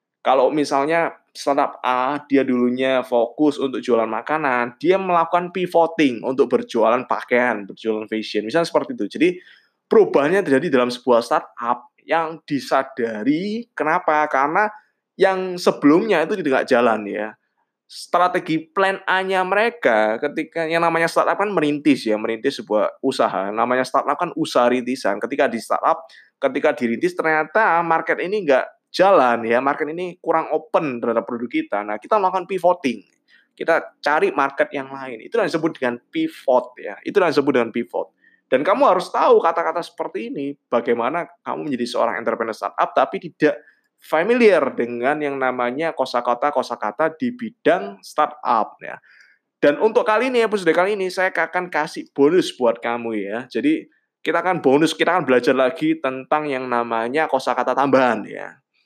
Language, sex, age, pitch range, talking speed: Indonesian, male, 20-39, 125-180 Hz, 150 wpm